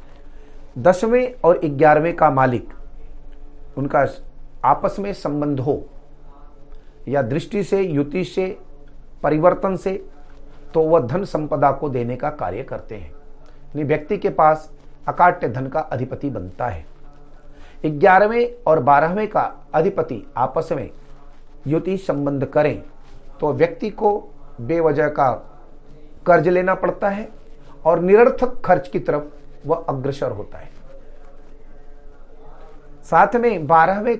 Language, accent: Hindi, native